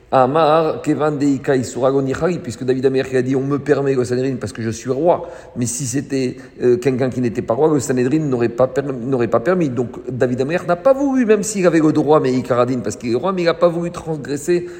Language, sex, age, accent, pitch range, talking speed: French, male, 50-69, French, 125-155 Hz, 225 wpm